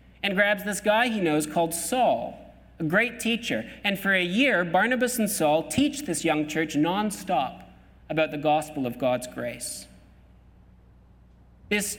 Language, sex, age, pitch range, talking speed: English, male, 40-59, 155-210 Hz, 150 wpm